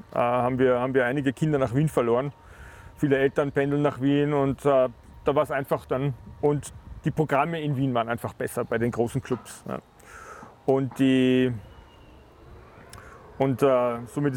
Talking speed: 140 wpm